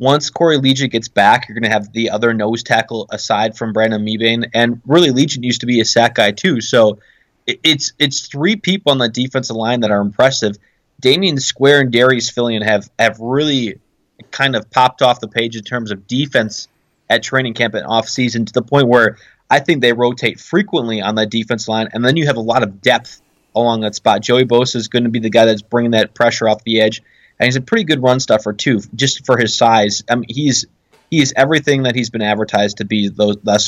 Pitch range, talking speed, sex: 110-130 Hz, 225 wpm, male